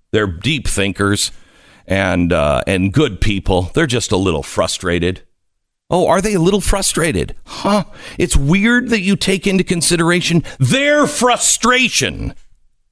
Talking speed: 135 wpm